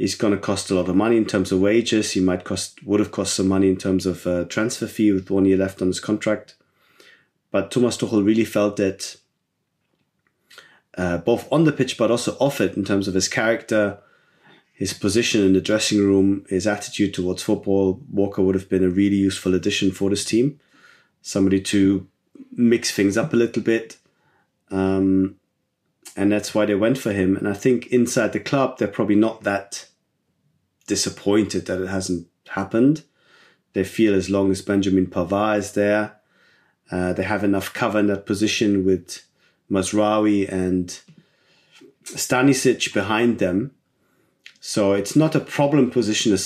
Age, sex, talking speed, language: 30-49, male, 170 wpm, English